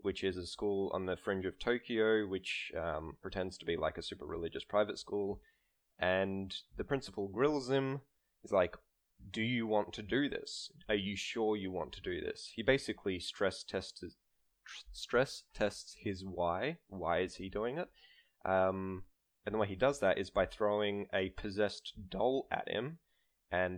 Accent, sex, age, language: Australian, male, 20-39, English